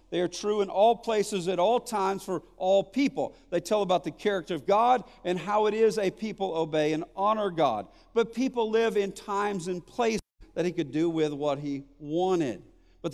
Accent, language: American, English